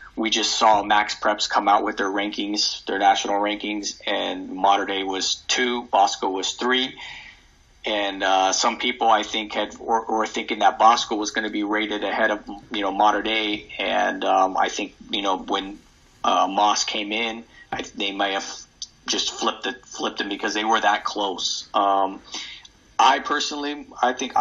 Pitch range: 100-115 Hz